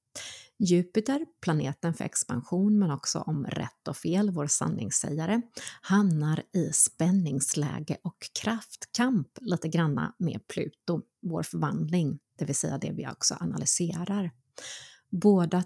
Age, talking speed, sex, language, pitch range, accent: 30-49, 120 wpm, female, Swedish, 155-195 Hz, native